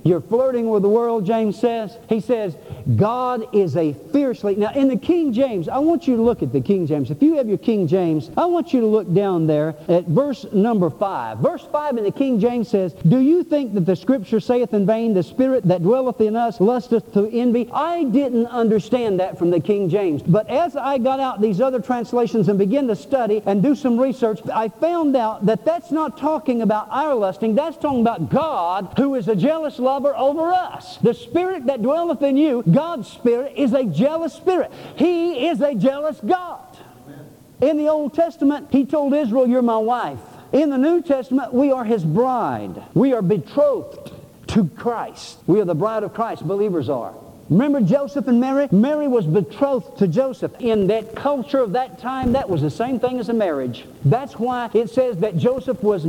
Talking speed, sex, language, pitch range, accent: 205 wpm, male, English, 205-270 Hz, American